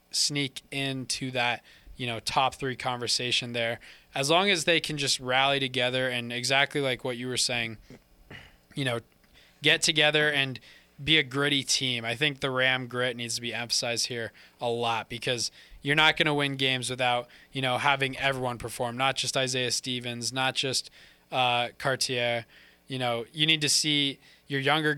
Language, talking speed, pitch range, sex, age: English, 180 wpm, 120-145 Hz, male, 20-39